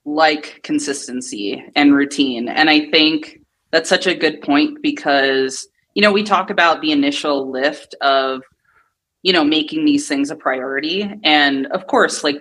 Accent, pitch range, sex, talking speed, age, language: American, 150-205 Hz, female, 160 wpm, 20-39, English